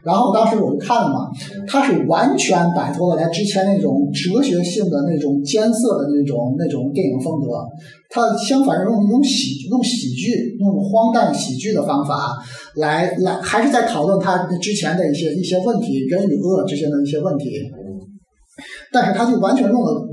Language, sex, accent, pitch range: Chinese, male, native, 145-205 Hz